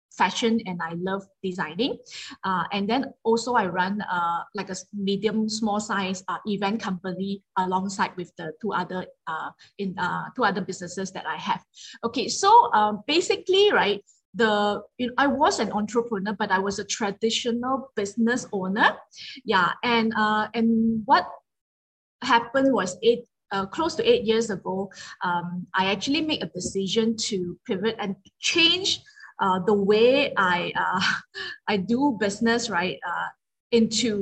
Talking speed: 155 wpm